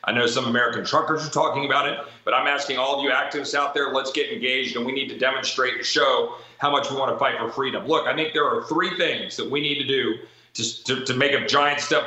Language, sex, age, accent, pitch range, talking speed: English, male, 40-59, American, 135-160 Hz, 275 wpm